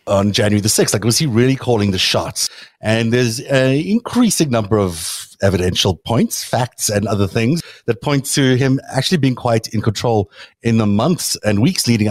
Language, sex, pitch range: English, male, 100-125 Hz